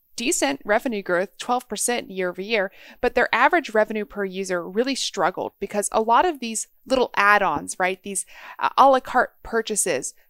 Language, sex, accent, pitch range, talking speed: English, female, American, 185-230 Hz, 170 wpm